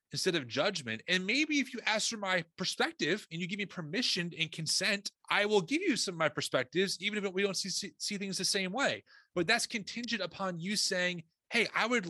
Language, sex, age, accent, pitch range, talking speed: English, male, 30-49, American, 150-200 Hz, 225 wpm